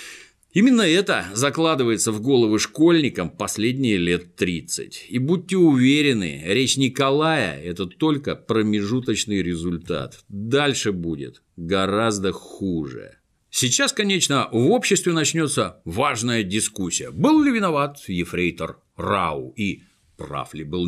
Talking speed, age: 110 wpm, 50-69